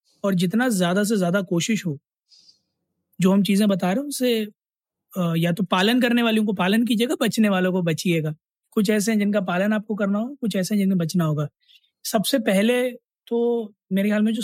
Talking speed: 200 wpm